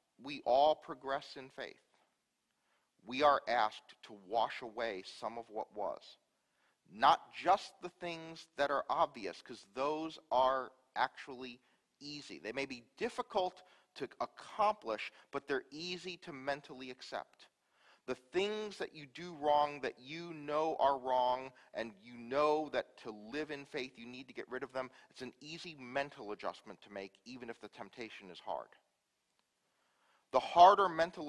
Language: English